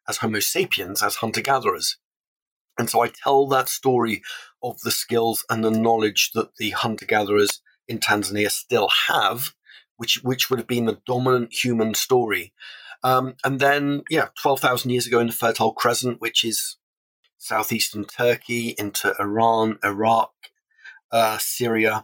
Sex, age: male, 30-49